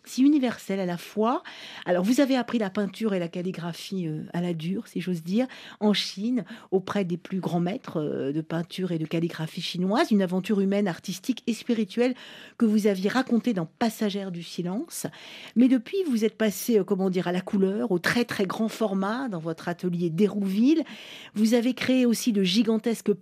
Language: French